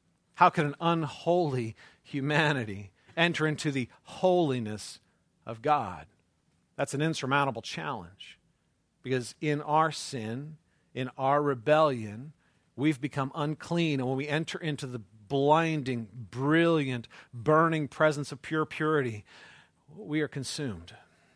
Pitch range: 125-155 Hz